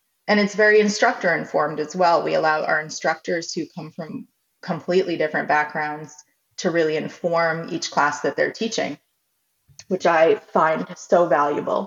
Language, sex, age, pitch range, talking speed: English, female, 20-39, 155-190 Hz, 145 wpm